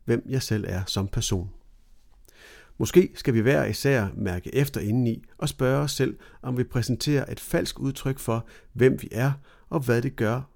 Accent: native